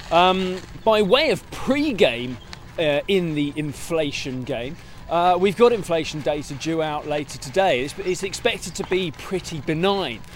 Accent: British